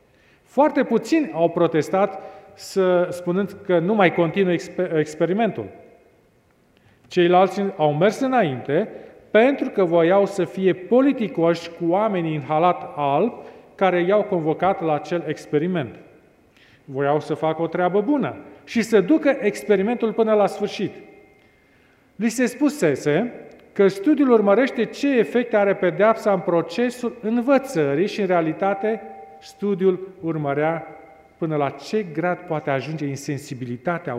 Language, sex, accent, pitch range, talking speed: Romanian, male, native, 155-220 Hz, 125 wpm